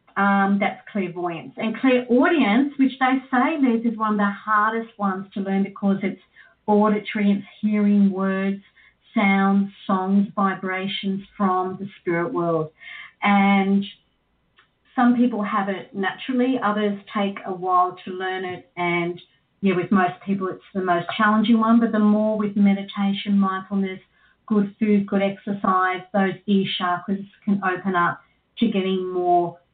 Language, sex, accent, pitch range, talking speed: English, female, Australian, 180-220 Hz, 145 wpm